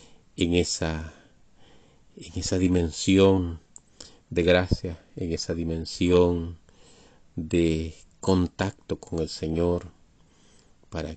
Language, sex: Spanish, male